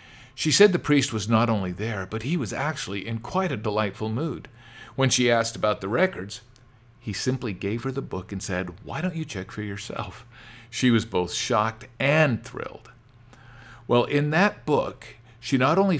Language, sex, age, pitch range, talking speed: English, male, 50-69, 100-120 Hz, 190 wpm